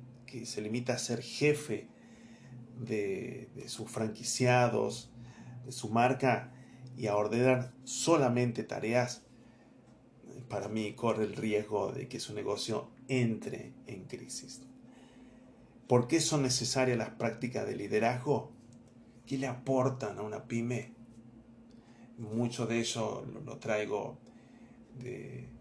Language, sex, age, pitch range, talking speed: Spanish, male, 40-59, 115-125 Hz, 115 wpm